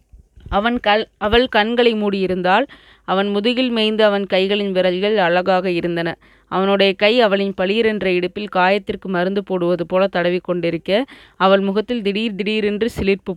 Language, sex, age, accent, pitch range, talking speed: Tamil, female, 20-39, native, 180-210 Hz, 125 wpm